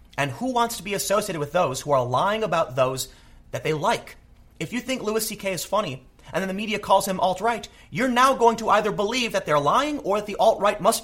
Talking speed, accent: 240 wpm, American